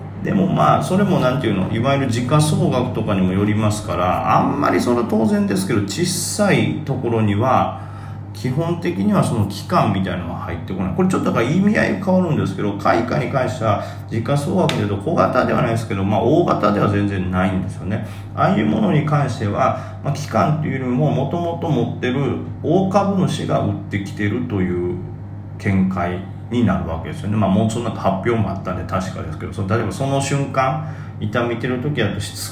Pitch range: 95-135 Hz